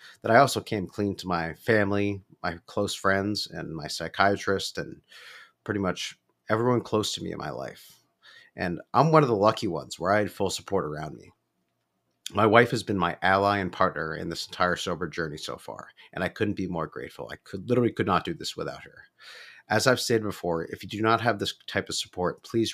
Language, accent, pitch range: English, American, 90-110 Hz